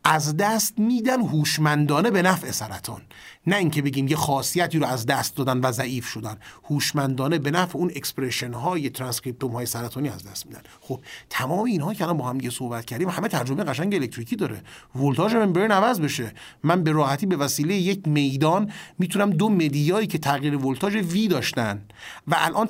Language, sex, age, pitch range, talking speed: Persian, male, 30-49, 140-195 Hz, 175 wpm